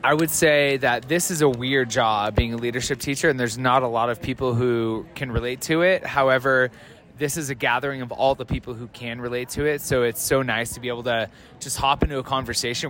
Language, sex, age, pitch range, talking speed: English, male, 20-39, 120-140 Hz, 240 wpm